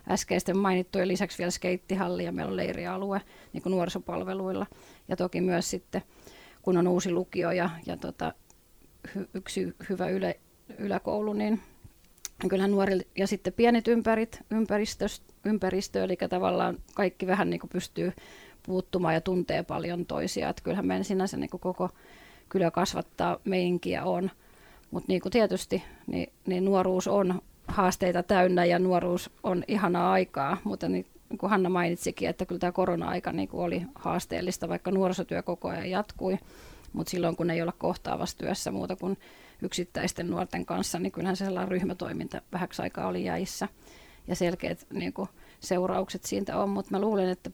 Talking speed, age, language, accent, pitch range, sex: 145 wpm, 30-49, Finnish, native, 175-190 Hz, female